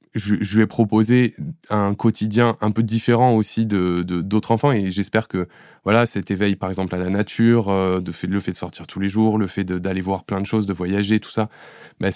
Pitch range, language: 95-115 Hz, French